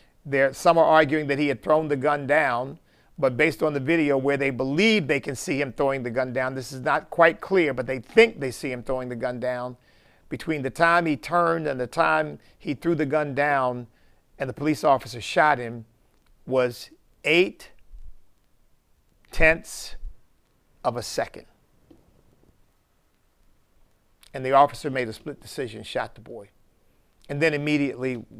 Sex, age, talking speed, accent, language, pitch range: male, 50-69, 170 wpm, American, English, 125-145 Hz